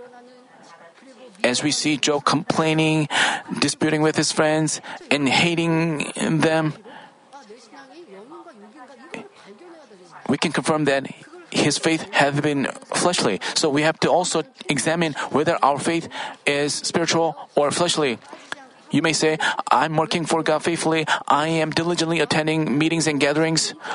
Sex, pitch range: male, 155-180 Hz